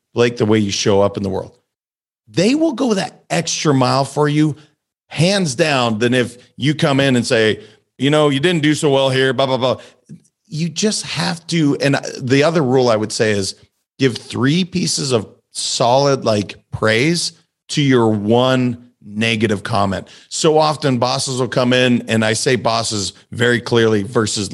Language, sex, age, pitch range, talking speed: English, male, 40-59, 110-145 Hz, 180 wpm